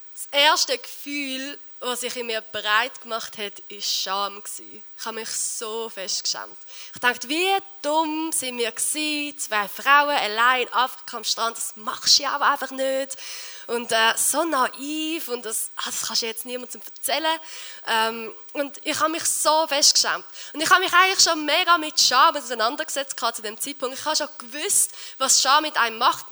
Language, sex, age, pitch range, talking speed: German, female, 20-39, 235-295 Hz, 180 wpm